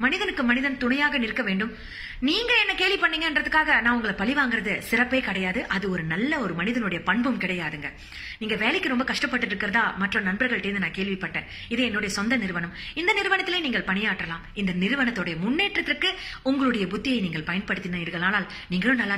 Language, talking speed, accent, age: Tamil, 45 wpm, native, 30-49